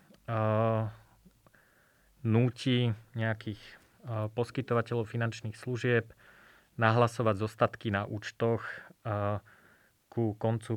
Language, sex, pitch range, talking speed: Slovak, male, 110-120 Hz, 80 wpm